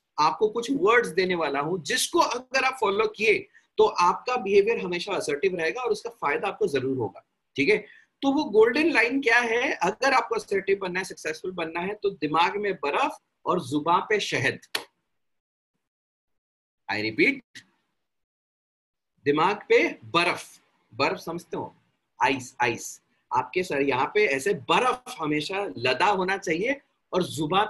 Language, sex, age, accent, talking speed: Hindi, male, 40-59, native, 145 wpm